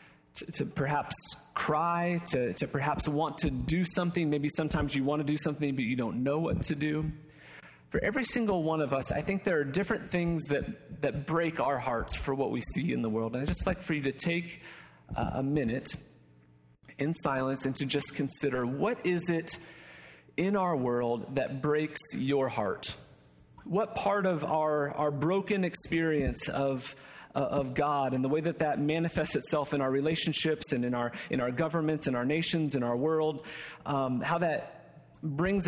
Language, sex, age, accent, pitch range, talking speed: English, male, 40-59, American, 130-165 Hz, 185 wpm